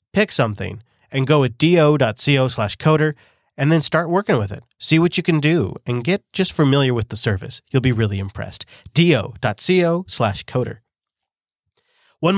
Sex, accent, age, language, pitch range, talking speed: male, American, 30-49, English, 125-170 Hz, 165 wpm